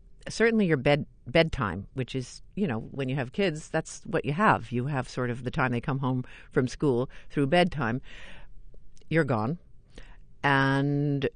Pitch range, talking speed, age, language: 120-165 Hz, 170 wpm, 50-69, English